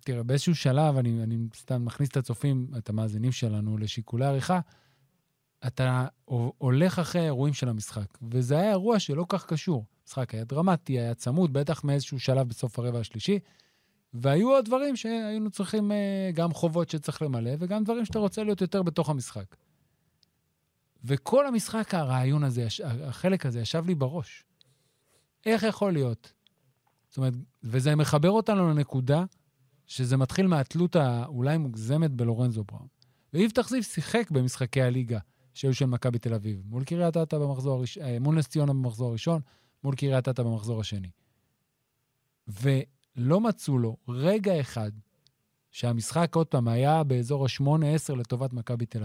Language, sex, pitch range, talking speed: Hebrew, male, 125-170 Hz, 145 wpm